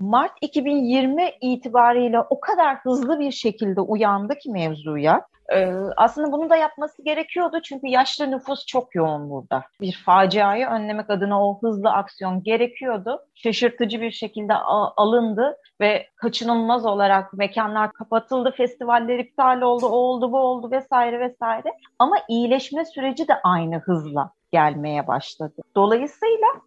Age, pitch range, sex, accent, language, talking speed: 40-59, 200-265 Hz, female, native, Turkish, 135 wpm